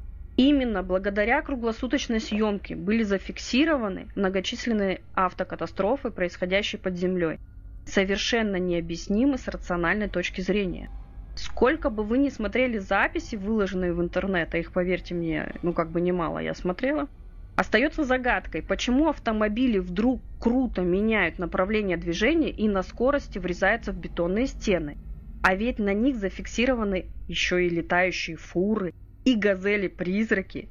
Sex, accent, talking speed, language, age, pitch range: female, native, 125 wpm, Russian, 20-39, 175-225 Hz